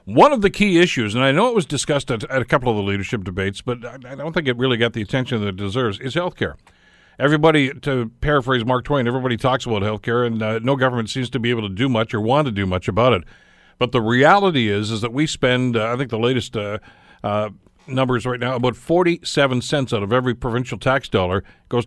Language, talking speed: English, 245 wpm